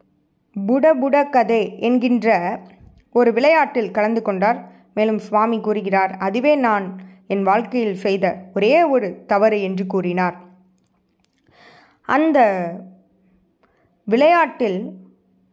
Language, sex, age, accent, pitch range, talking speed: Tamil, female, 20-39, native, 190-235 Hz, 90 wpm